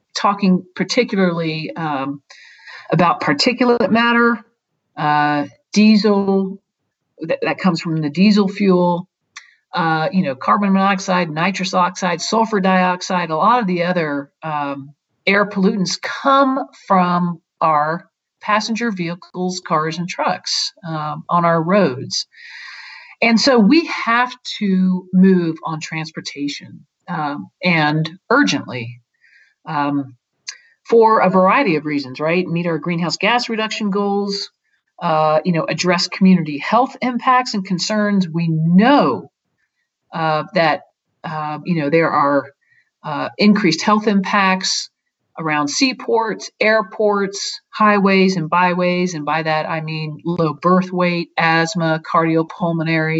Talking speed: 120 wpm